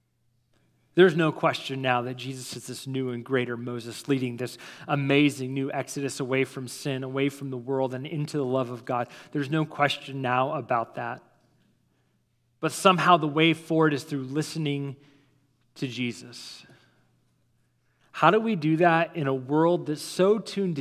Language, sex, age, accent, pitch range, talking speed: English, male, 30-49, American, 135-200 Hz, 165 wpm